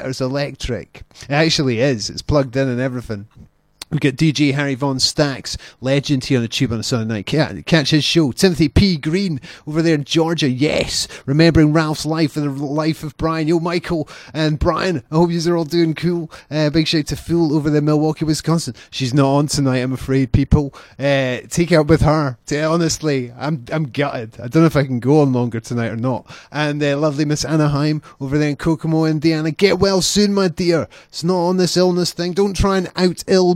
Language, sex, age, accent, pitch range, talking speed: English, male, 30-49, British, 130-160 Hz, 215 wpm